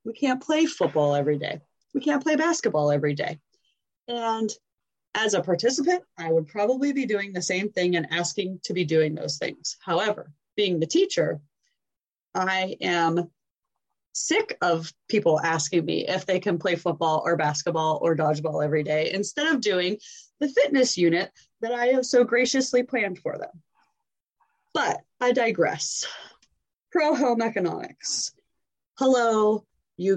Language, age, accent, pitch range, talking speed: English, 20-39, American, 170-255 Hz, 145 wpm